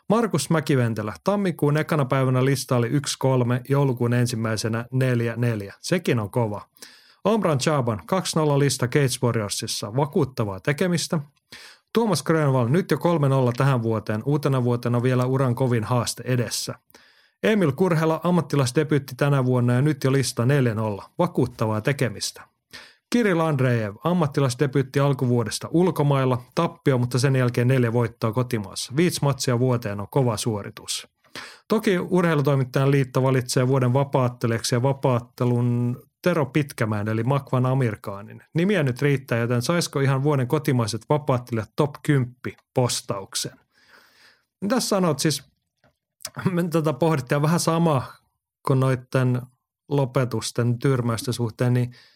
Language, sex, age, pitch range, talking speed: Finnish, male, 30-49, 120-150 Hz, 120 wpm